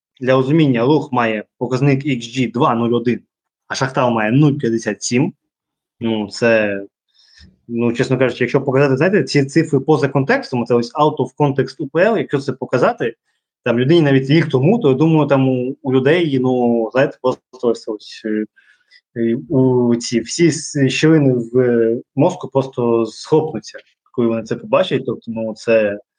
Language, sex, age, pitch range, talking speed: Ukrainian, male, 20-39, 115-145 Hz, 140 wpm